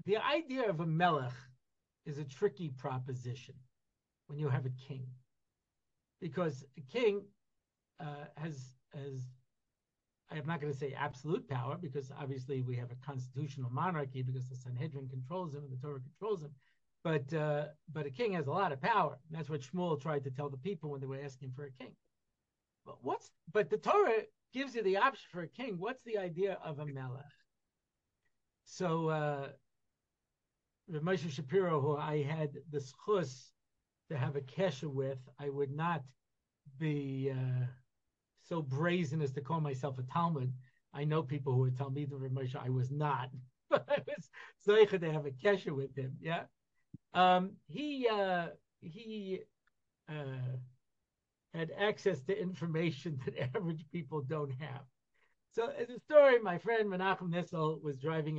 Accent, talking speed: American, 170 wpm